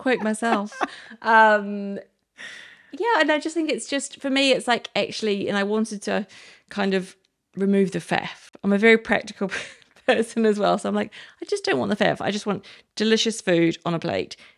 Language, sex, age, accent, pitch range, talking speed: English, female, 30-49, British, 175-220 Hz, 200 wpm